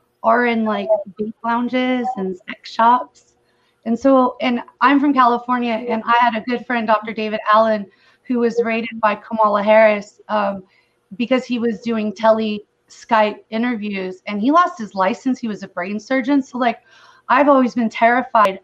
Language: English